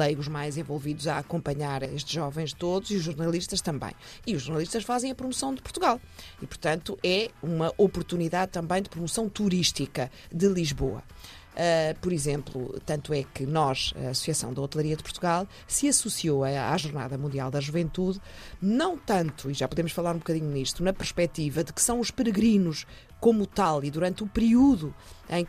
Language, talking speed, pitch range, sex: Portuguese, 170 wpm, 145-195 Hz, female